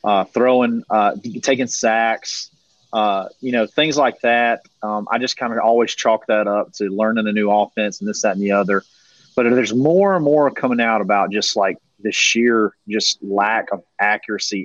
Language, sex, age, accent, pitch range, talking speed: English, male, 30-49, American, 105-125 Hz, 195 wpm